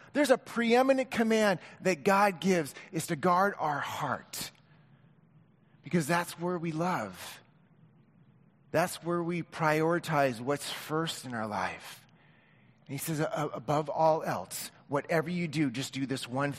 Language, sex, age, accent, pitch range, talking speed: English, male, 30-49, American, 145-175 Hz, 140 wpm